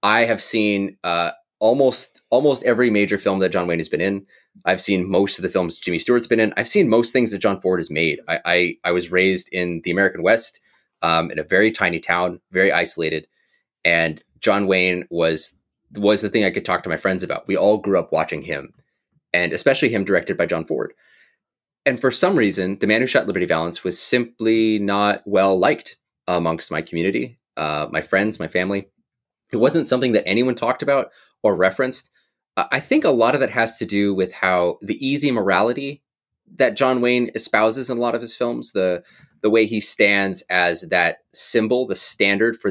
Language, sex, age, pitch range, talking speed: English, male, 30-49, 90-115 Hz, 205 wpm